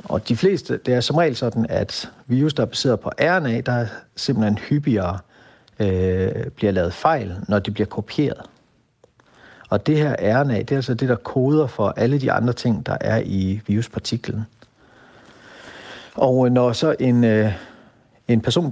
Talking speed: 170 wpm